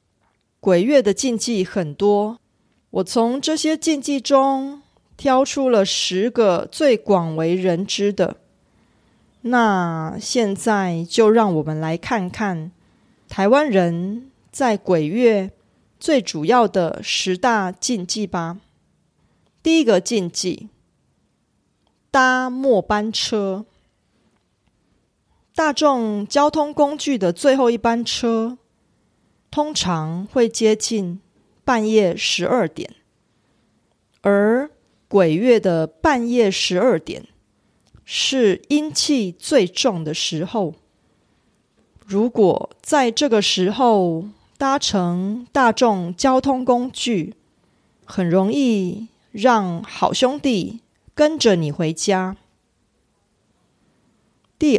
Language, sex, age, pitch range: Korean, female, 30-49, 185-255 Hz